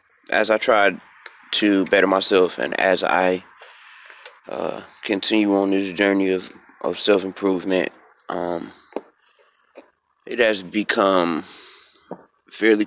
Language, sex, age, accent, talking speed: English, male, 30-49, American, 100 wpm